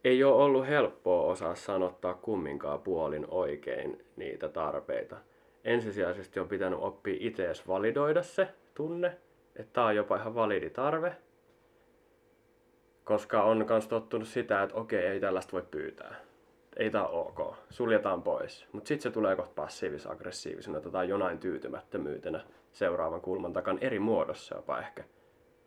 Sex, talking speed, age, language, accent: male, 140 wpm, 20-39, Finnish, native